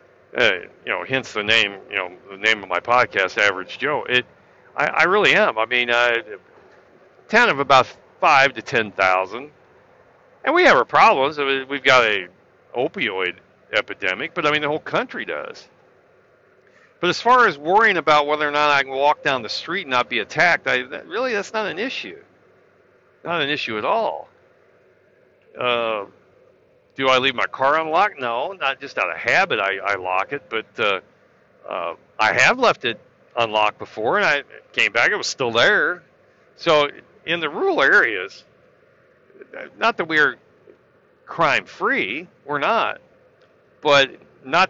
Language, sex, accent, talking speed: English, male, American, 170 wpm